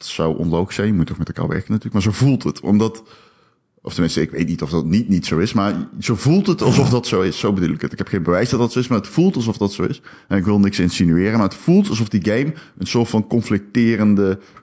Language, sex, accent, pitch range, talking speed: Dutch, male, Dutch, 100-150 Hz, 285 wpm